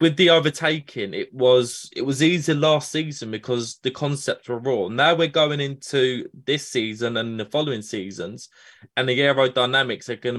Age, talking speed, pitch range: 20-39, 175 wpm, 120-155 Hz